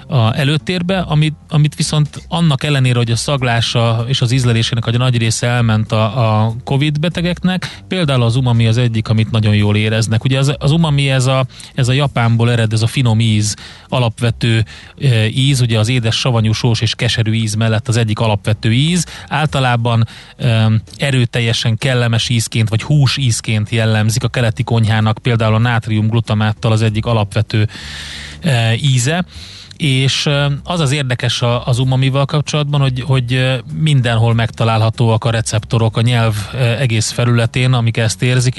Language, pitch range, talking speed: Hungarian, 110-130 Hz, 155 wpm